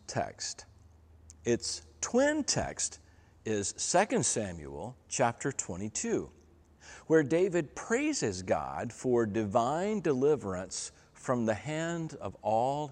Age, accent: 50-69, American